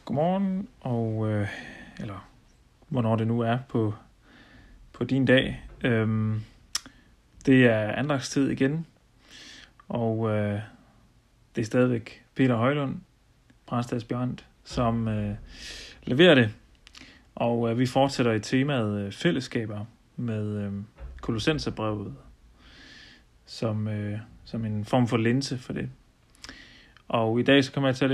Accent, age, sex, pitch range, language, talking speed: native, 30-49, male, 110-135 Hz, Danish, 120 wpm